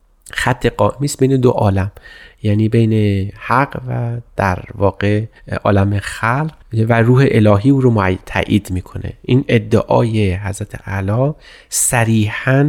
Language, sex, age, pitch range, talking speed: Persian, male, 30-49, 100-120 Hz, 120 wpm